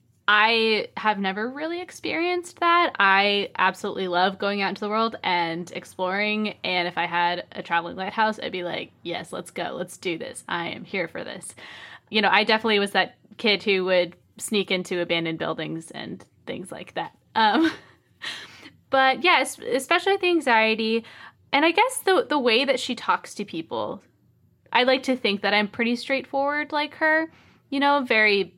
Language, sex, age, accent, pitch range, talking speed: English, female, 20-39, American, 195-275 Hz, 175 wpm